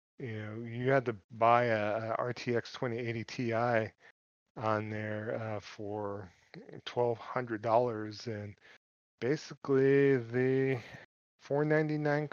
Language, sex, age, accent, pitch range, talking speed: English, male, 40-59, American, 105-115 Hz, 95 wpm